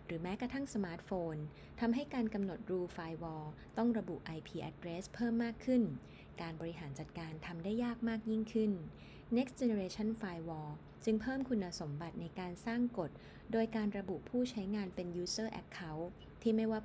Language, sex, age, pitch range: Thai, female, 20-39, 160-210 Hz